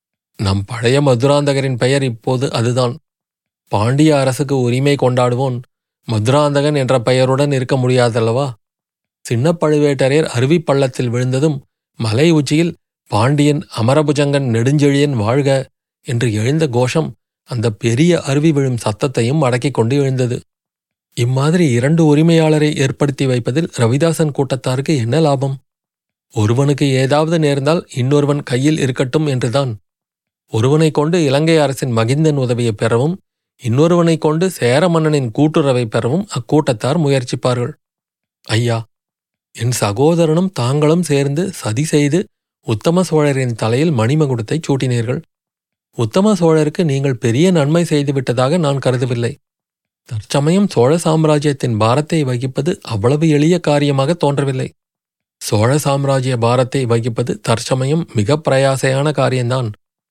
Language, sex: Tamil, male